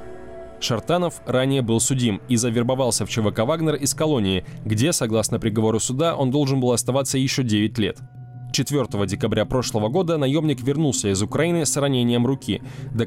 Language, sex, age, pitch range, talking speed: Russian, male, 20-39, 115-140 Hz, 155 wpm